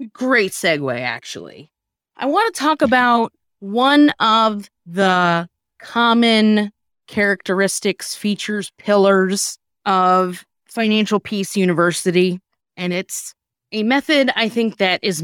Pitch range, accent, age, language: 175-210 Hz, American, 20-39, English